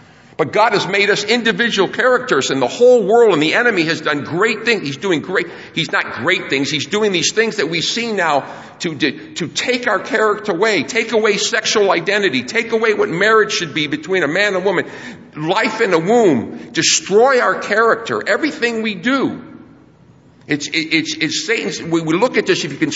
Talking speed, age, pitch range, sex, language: 200 wpm, 50-69, 175-235 Hz, male, English